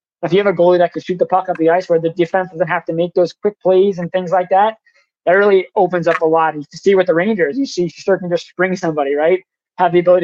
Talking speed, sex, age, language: 285 wpm, male, 20-39, English